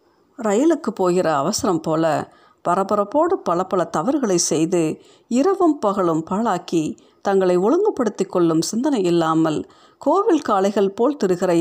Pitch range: 170-240 Hz